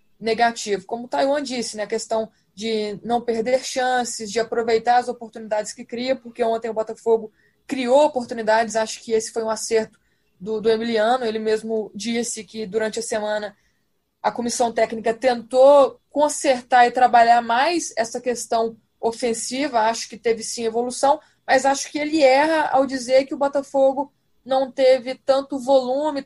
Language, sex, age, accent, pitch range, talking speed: Portuguese, female, 20-39, Brazilian, 225-270 Hz, 160 wpm